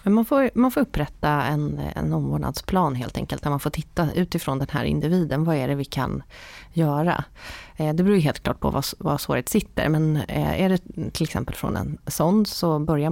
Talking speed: 200 wpm